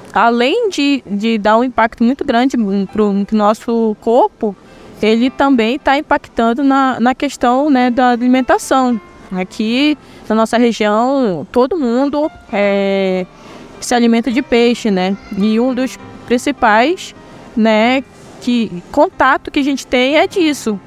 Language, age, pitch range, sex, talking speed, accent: Portuguese, 20-39, 225-275 Hz, female, 135 wpm, Brazilian